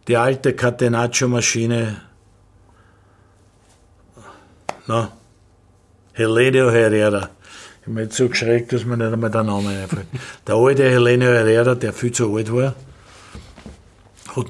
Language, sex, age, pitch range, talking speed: German, male, 60-79, 105-125 Hz, 120 wpm